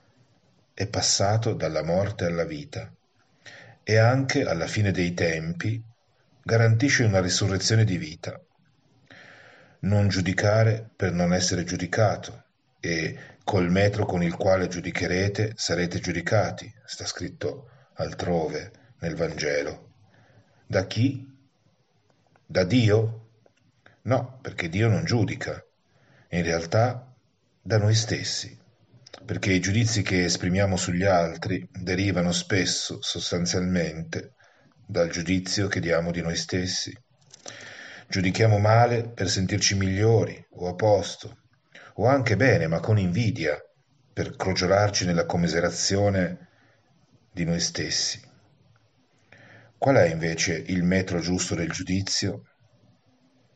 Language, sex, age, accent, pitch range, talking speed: Italian, male, 40-59, native, 90-110 Hz, 110 wpm